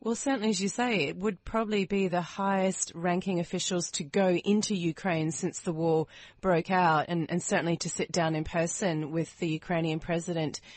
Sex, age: female, 30-49